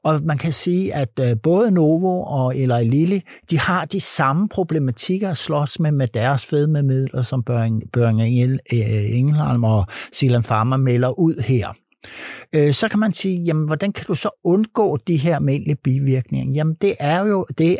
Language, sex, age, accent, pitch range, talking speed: Danish, male, 60-79, native, 125-165 Hz, 170 wpm